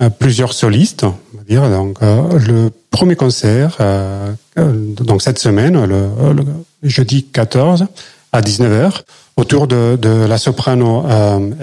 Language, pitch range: French, 110-140 Hz